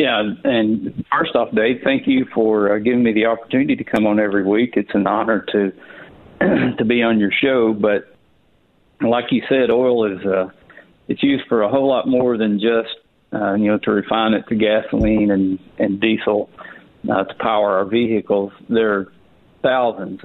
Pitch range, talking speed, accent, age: 105-115 Hz, 185 wpm, American, 50-69